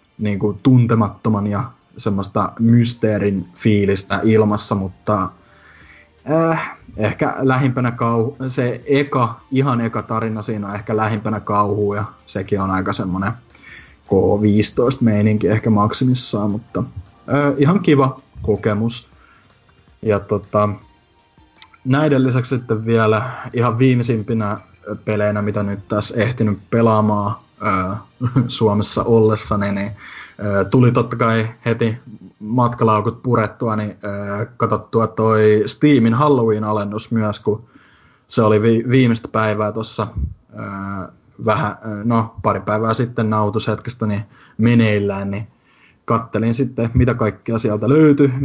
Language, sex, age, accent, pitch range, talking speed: Finnish, male, 20-39, native, 105-120 Hz, 105 wpm